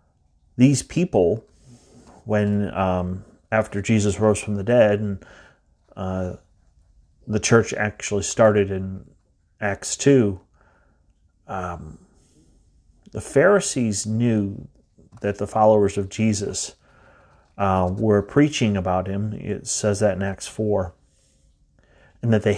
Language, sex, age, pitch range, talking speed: English, male, 30-49, 90-110 Hz, 110 wpm